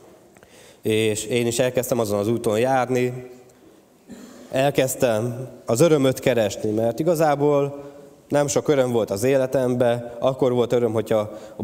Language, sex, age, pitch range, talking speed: Hungarian, male, 20-39, 115-140 Hz, 130 wpm